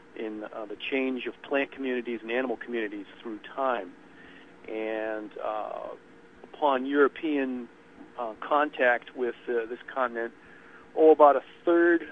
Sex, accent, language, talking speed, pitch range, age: male, American, English, 130 wpm, 115-140 Hz, 50-69